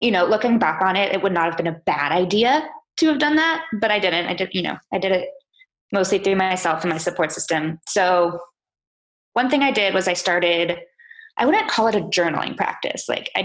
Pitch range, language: 175-215 Hz, English